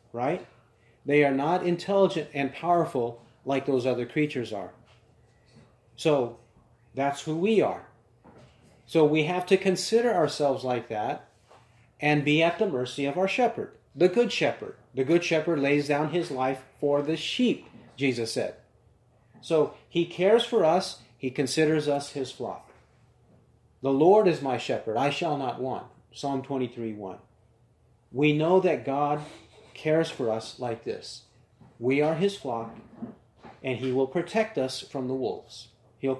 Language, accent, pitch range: English, American, 120-160 Hz